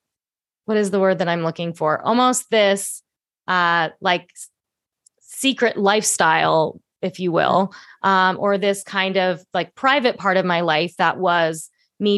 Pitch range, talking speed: 170-215 Hz, 155 wpm